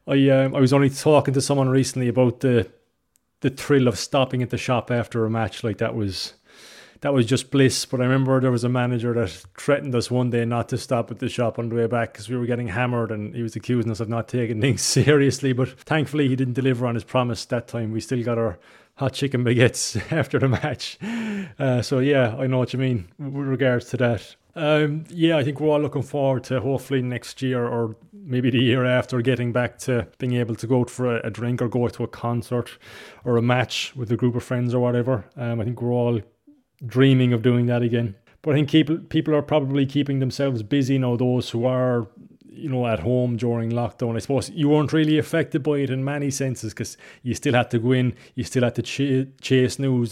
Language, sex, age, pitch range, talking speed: English, male, 20-39, 120-140 Hz, 235 wpm